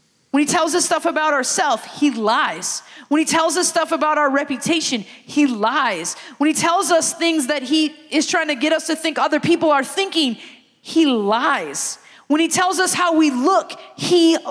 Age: 20-39